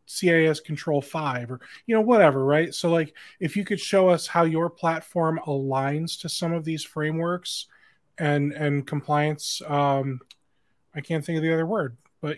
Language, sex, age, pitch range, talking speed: English, male, 20-39, 145-180 Hz, 175 wpm